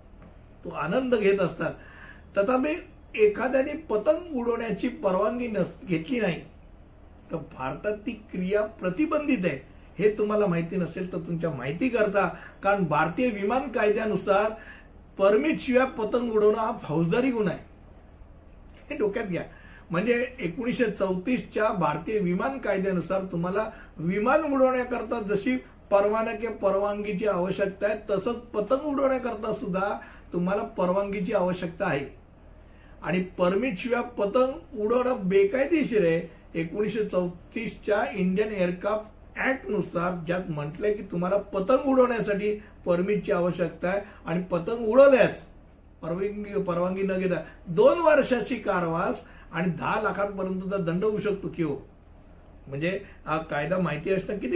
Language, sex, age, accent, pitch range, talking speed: Hindi, male, 60-79, native, 180-230 Hz, 80 wpm